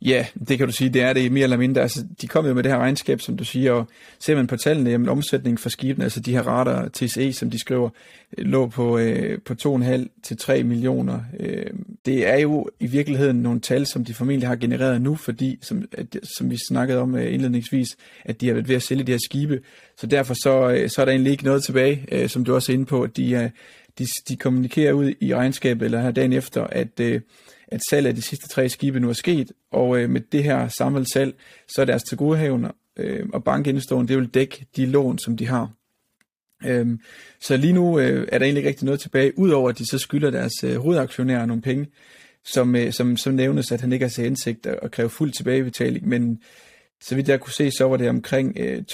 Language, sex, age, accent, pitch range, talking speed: Danish, male, 30-49, native, 120-140 Hz, 230 wpm